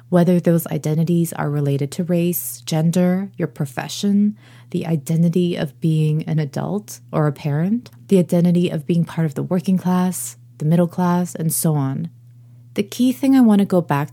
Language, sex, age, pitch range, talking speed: English, female, 20-39, 145-180 Hz, 180 wpm